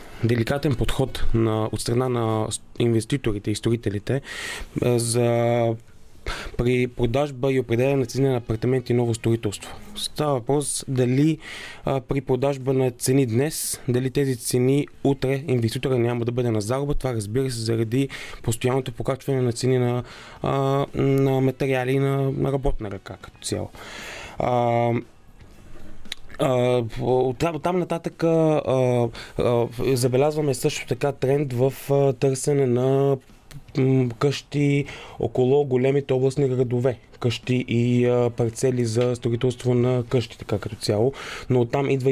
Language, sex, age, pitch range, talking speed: Bulgarian, male, 20-39, 115-135 Hz, 125 wpm